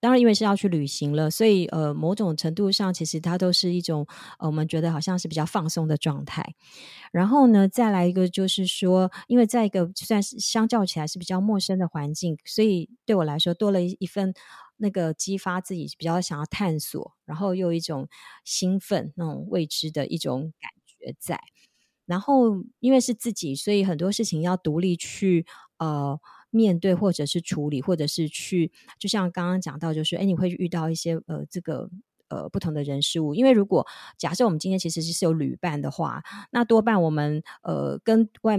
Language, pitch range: Chinese, 160-200 Hz